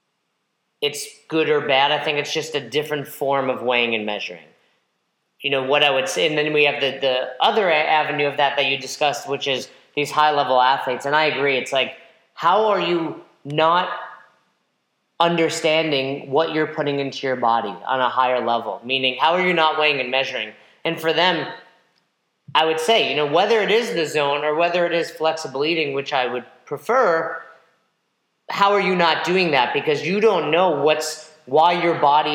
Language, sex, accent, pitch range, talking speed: English, male, American, 135-165 Hz, 195 wpm